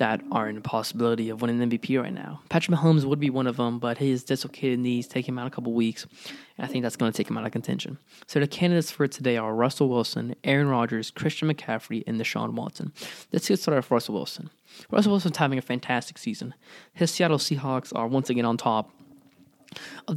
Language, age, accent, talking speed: English, 10-29, American, 220 wpm